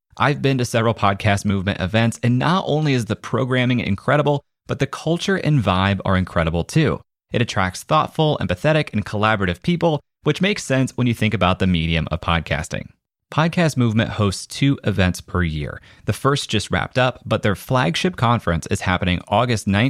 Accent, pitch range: American, 90-130 Hz